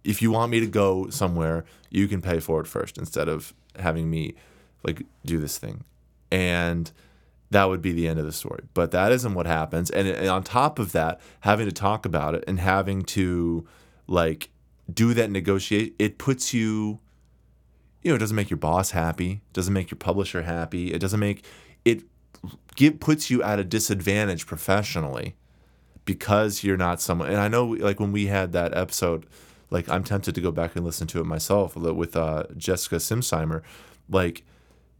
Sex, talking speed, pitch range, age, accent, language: male, 190 wpm, 85-105 Hz, 20-39, American, English